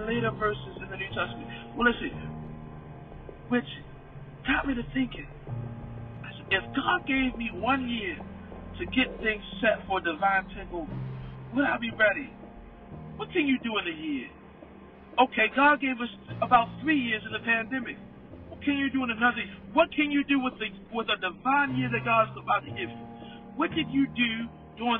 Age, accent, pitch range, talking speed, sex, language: 50-69, American, 175-260 Hz, 185 wpm, male, English